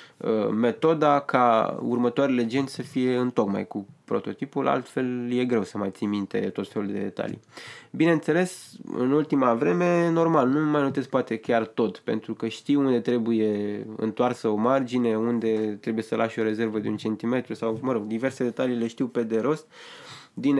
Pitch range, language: 115-150 Hz, Romanian